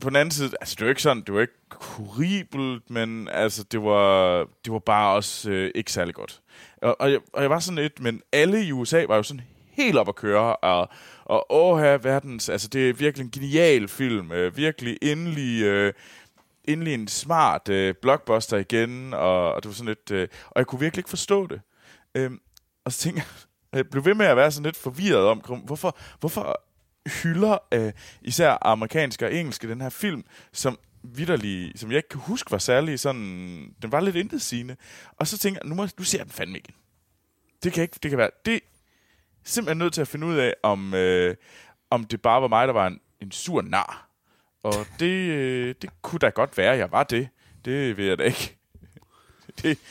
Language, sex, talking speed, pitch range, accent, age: Danish, male, 215 wpm, 110-160 Hz, native, 20-39